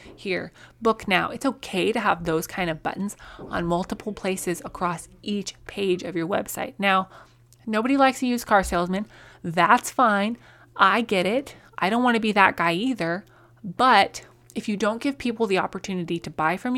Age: 20-39